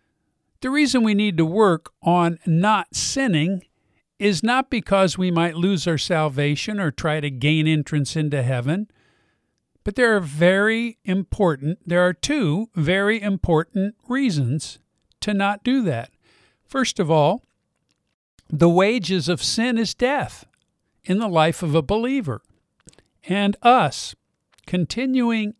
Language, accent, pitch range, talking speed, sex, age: English, American, 150-210 Hz, 135 wpm, male, 50-69